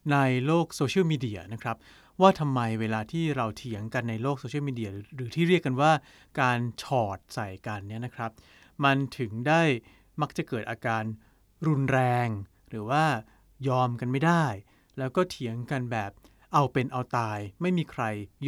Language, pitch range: Thai, 110-150 Hz